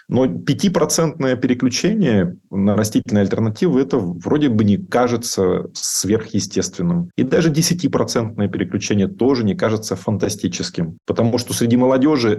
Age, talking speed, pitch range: 30-49, 115 wpm, 100-130 Hz